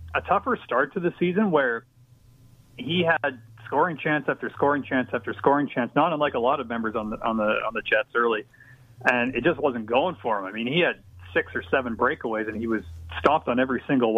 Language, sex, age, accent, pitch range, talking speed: English, male, 30-49, American, 115-140 Hz, 225 wpm